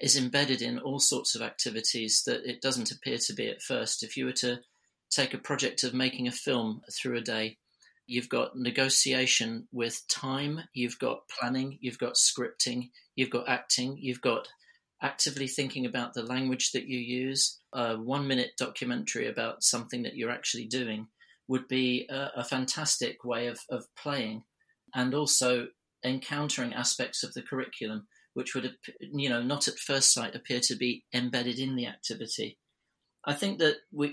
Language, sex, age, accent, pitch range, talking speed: English, male, 40-59, British, 120-135 Hz, 170 wpm